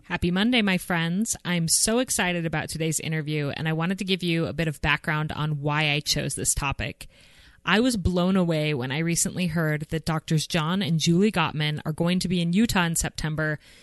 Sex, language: female, English